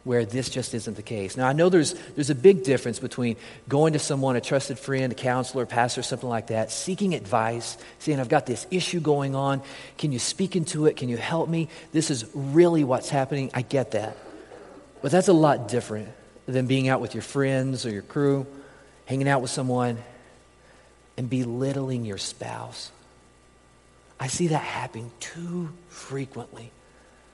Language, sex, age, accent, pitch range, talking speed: English, male, 40-59, American, 115-140 Hz, 180 wpm